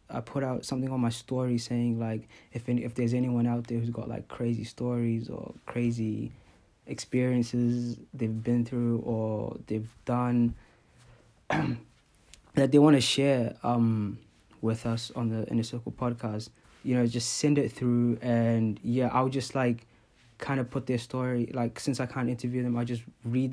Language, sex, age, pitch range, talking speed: English, male, 20-39, 115-130 Hz, 175 wpm